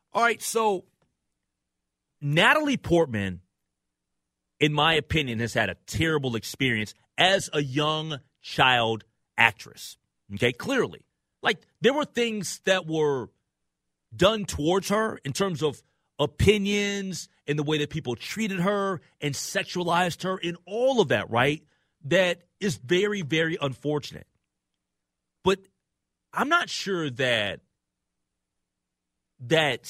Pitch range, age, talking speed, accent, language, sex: 120-190 Hz, 40-59, 120 wpm, American, English, male